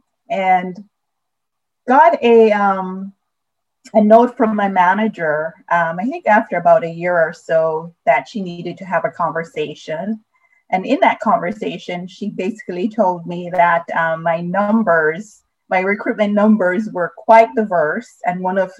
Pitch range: 175-225 Hz